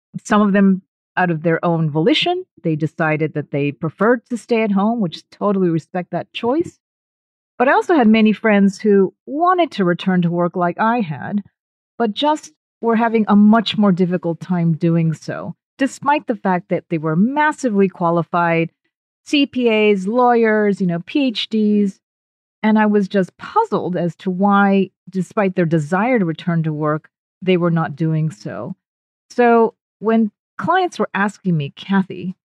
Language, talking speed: English, 165 wpm